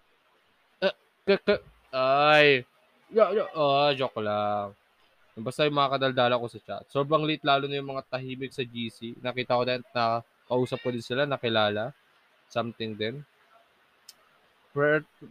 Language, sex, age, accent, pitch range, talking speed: Filipino, male, 20-39, native, 110-140 Hz, 130 wpm